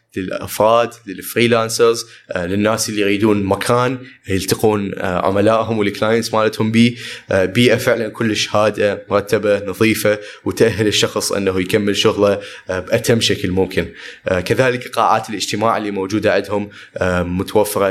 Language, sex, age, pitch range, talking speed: Arabic, male, 20-39, 95-110 Hz, 105 wpm